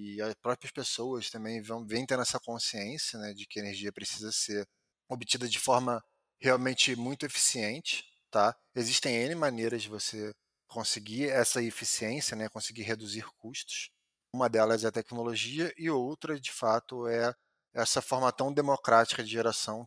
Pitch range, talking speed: 110-130 Hz, 155 wpm